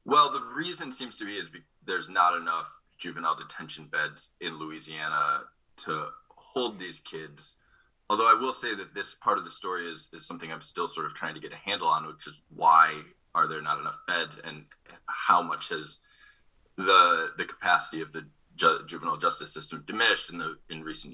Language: English